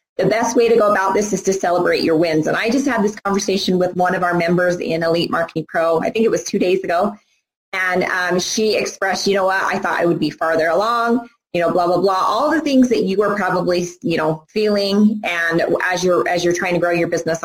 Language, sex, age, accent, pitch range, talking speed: English, female, 20-39, American, 170-220 Hz, 250 wpm